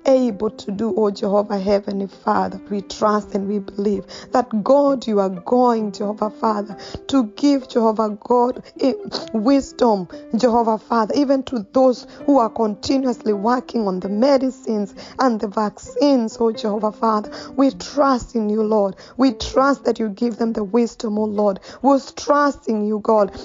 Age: 20-39